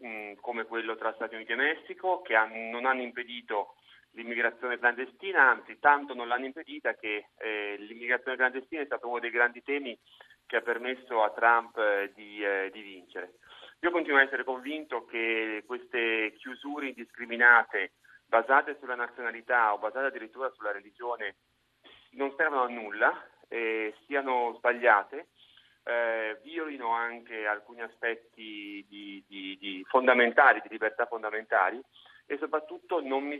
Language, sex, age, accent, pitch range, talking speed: Italian, male, 30-49, native, 110-135 Hz, 140 wpm